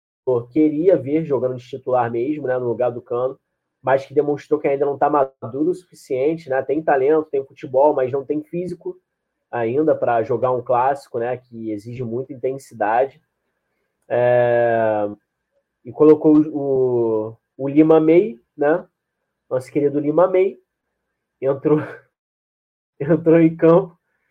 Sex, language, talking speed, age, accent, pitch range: male, Portuguese, 135 wpm, 20-39, Brazilian, 125-170 Hz